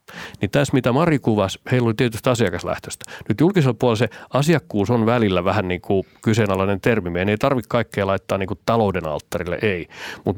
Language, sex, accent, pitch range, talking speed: Finnish, male, native, 95-125 Hz, 180 wpm